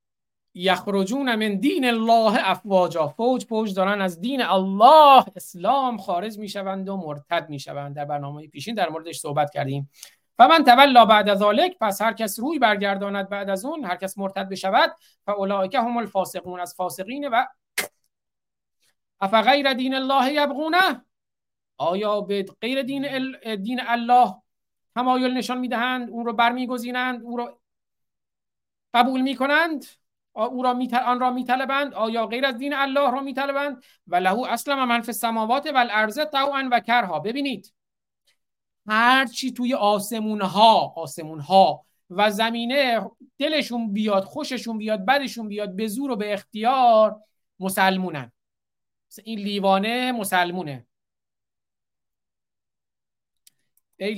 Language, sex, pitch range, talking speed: Persian, male, 195-255 Hz, 125 wpm